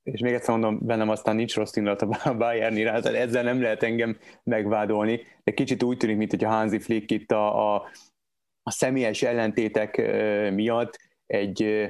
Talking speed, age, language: 170 wpm, 20-39, Hungarian